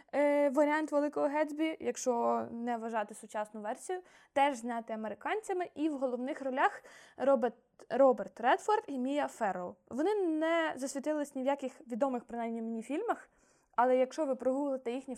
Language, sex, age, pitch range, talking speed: Ukrainian, female, 20-39, 225-295 Hz, 140 wpm